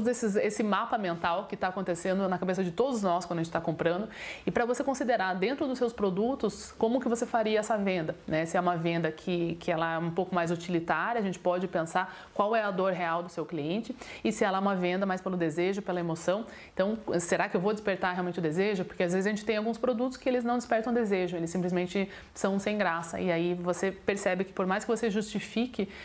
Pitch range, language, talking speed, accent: 180-225 Hz, Portuguese, 240 wpm, Brazilian